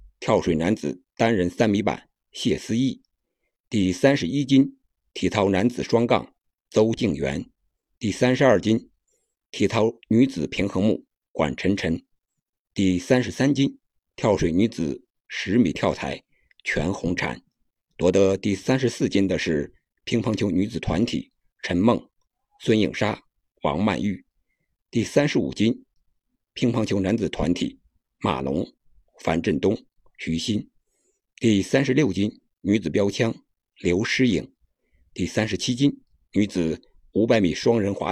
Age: 60-79